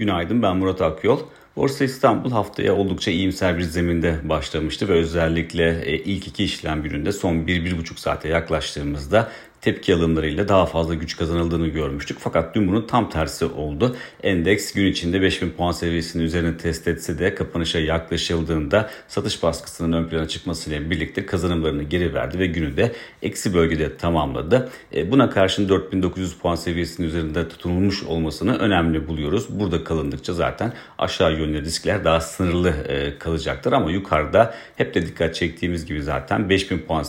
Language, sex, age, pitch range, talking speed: Turkish, male, 40-59, 80-95 Hz, 145 wpm